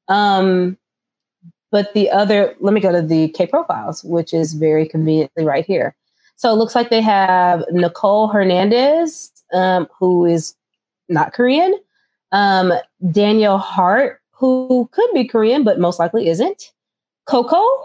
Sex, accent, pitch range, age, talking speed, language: female, American, 175-235 Hz, 20-39, 140 wpm, English